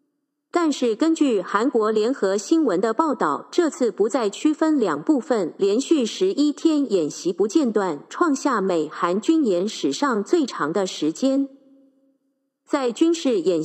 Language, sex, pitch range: Chinese, female, 215-310 Hz